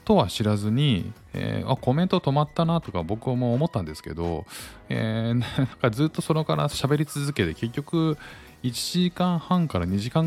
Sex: male